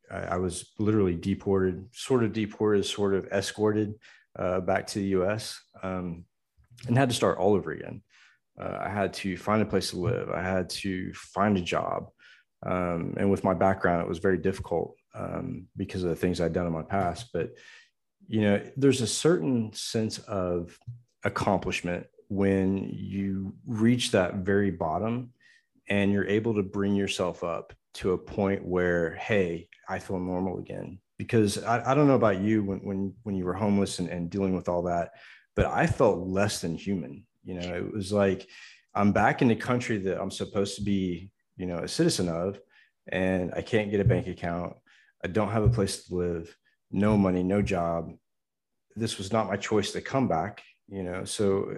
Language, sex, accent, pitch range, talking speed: English, male, American, 90-105 Hz, 190 wpm